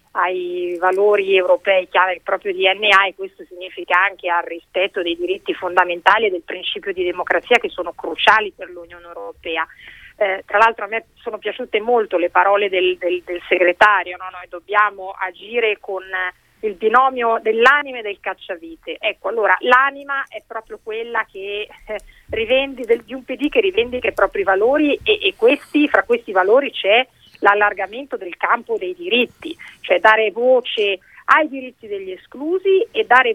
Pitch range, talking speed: 190-280 Hz, 160 wpm